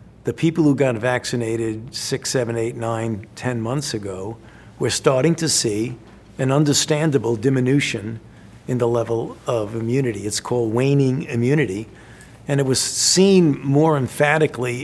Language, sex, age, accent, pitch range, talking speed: English, male, 50-69, American, 115-135 Hz, 140 wpm